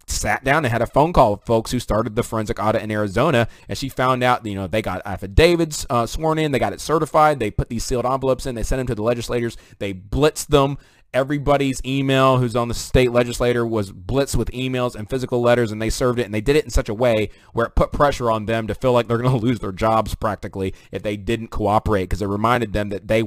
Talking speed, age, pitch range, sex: 255 wpm, 30-49, 105-130 Hz, male